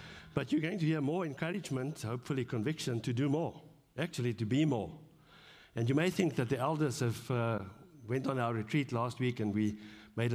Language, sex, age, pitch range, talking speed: English, male, 60-79, 110-140 Hz, 195 wpm